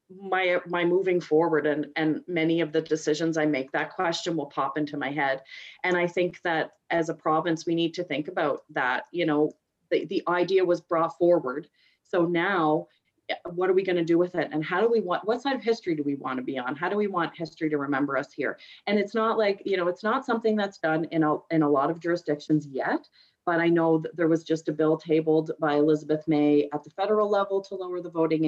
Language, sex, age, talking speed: English, female, 30-49, 240 wpm